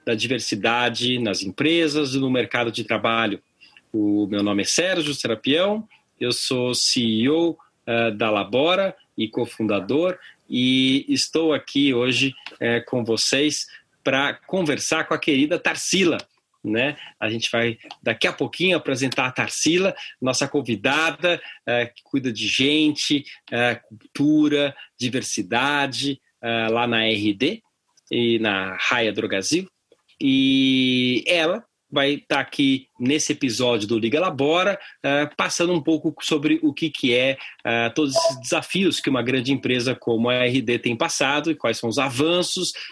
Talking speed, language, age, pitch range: 130 wpm, Portuguese, 40-59, 120-165 Hz